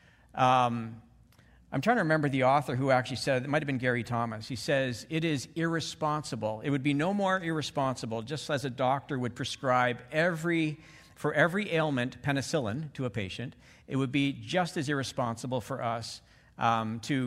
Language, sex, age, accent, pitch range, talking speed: English, male, 50-69, American, 115-150 Hz, 175 wpm